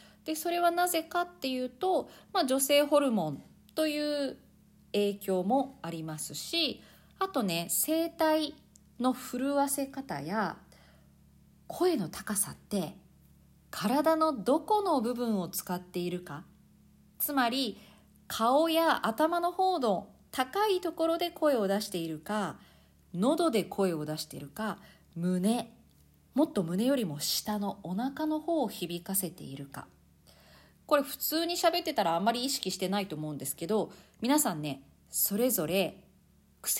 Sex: female